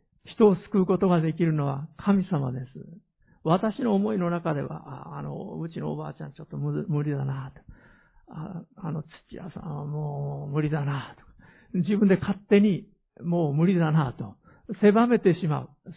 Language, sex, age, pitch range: Japanese, male, 50-69, 160-220 Hz